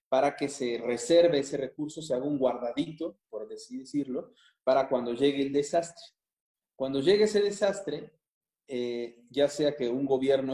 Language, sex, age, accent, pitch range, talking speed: Spanish, male, 40-59, Mexican, 125-160 Hz, 160 wpm